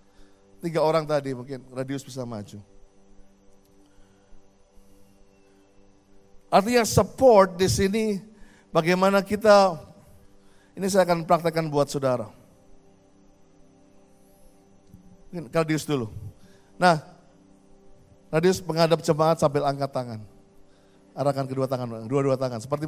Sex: male